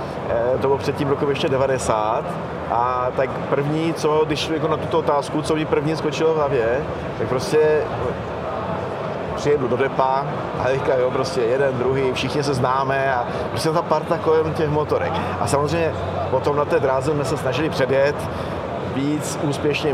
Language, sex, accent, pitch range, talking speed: Czech, male, native, 135-160 Hz, 165 wpm